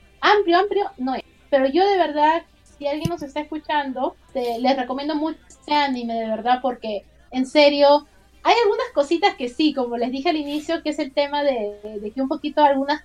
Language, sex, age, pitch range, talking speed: Spanish, female, 30-49, 240-305 Hz, 200 wpm